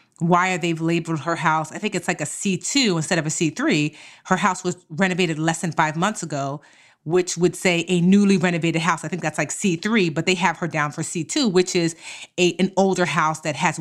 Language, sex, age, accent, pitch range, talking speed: English, female, 30-49, American, 165-225 Hz, 225 wpm